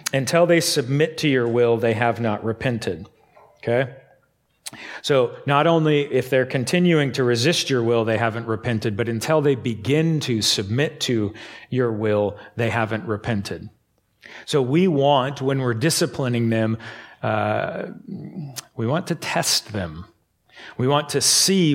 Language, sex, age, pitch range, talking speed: English, male, 40-59, 110-140 Hz, 145 wpm